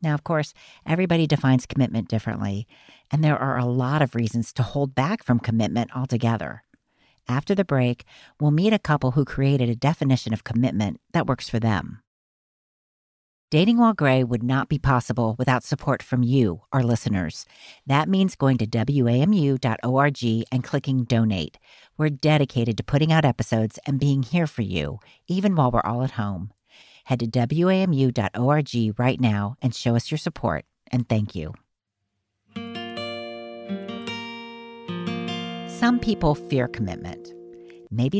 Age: 50-69